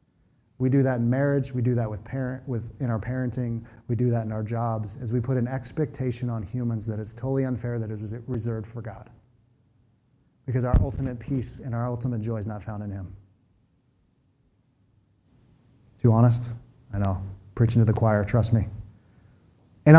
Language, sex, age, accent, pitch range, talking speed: English, male, 30-49, American, 115-135 Hz, 185 wpm